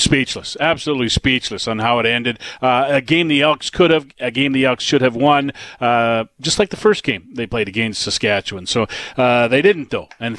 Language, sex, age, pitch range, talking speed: English, male, 40-59, 120-150 Hz, 215 wpm